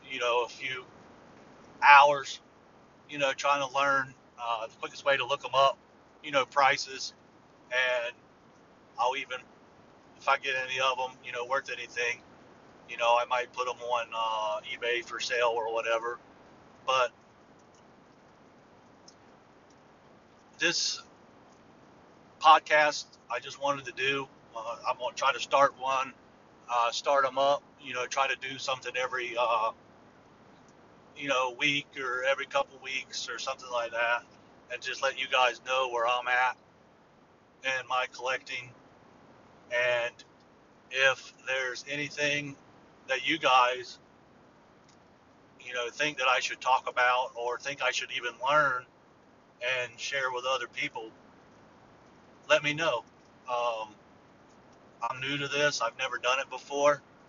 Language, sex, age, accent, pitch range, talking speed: English, male, 40-59, American, 120-140 Hz, 145 wpm